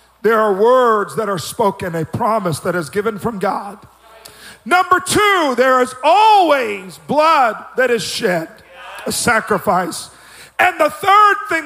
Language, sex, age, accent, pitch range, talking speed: English, male, 50-69, American, 215-290 Hz, 145 wpm